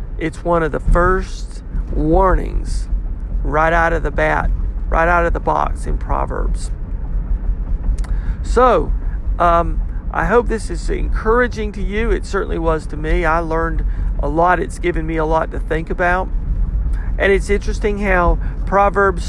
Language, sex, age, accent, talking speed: English, male, 50-69, American, 150 wpm